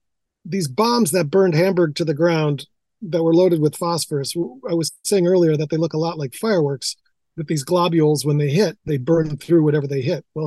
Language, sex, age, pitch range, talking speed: English, male, 40-59, 140-170 Hz, 210 wpm